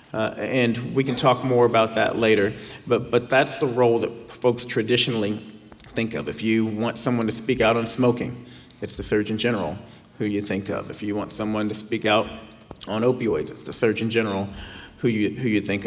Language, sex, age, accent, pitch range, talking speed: English, male, 40-59, American, 110-125 Hz, 215 wpm